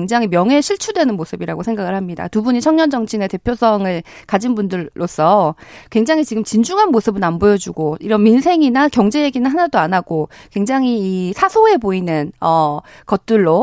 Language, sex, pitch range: Korean, female, 195-275 Hz